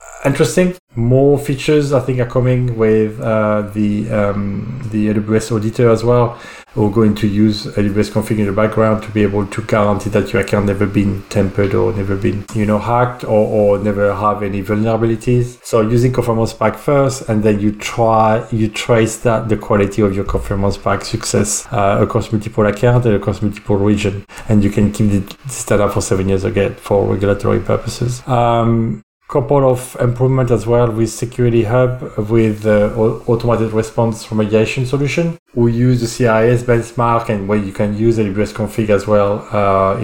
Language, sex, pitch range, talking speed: English, male, 105-120 Hz, 180 wpm